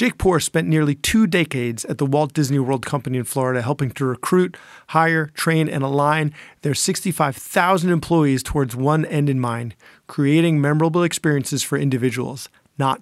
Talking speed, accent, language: 160 wpm, American, English